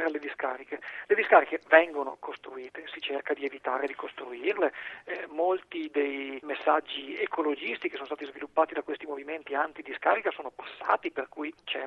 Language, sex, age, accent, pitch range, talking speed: Italian, male, 40-59, native, 145-230 Hz, 140 wpm